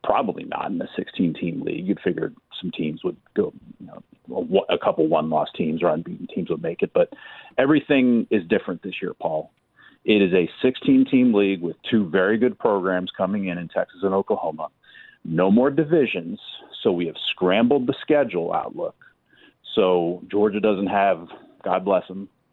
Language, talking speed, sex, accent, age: English, 170 wpm, male, American, 40-59